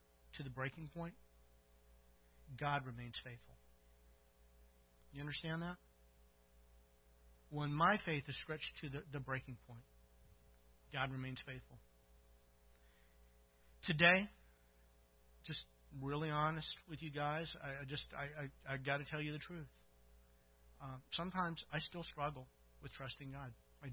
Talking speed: 130 wpm